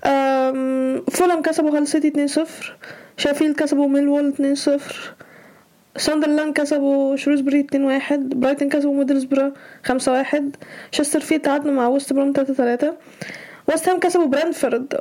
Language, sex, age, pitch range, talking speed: Arabic, female, 10-29, 270-305 Hz, 115 wpm